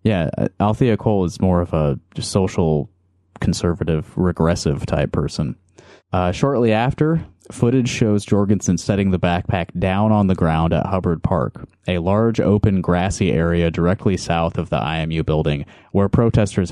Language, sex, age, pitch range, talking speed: English, male, 20-39, 80-105 Hz, 145 wpm